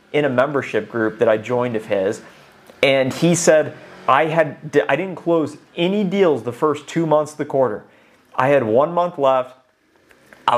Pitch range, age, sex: 130-165 Hz, 30-49, male